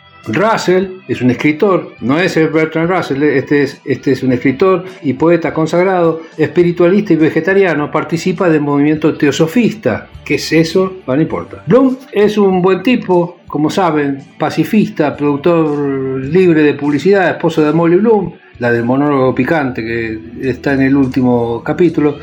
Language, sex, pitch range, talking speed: Spanish, male, 145-185 Hz, 150 wpm